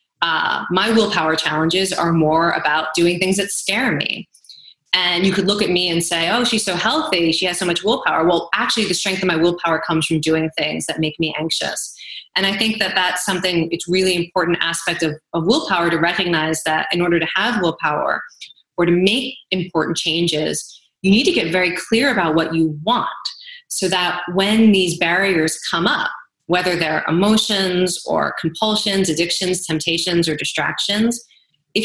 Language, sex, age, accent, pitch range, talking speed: English, female, 20-39, American, 160-190 Hz, 185 wpm